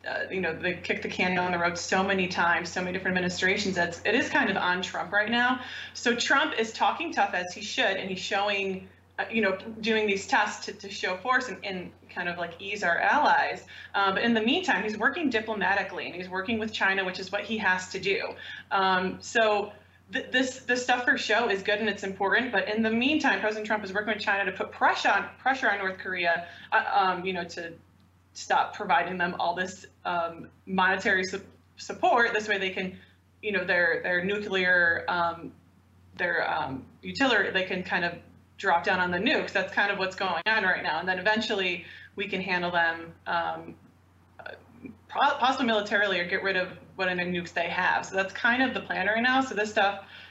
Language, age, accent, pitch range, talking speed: English, 20-39, American, 180-215 Hz, 210 wpm